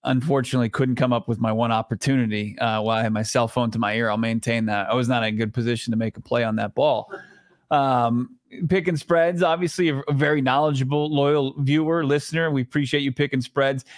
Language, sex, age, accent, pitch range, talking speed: English, male, 30-49, American, 130-160 Hz, 225 wpm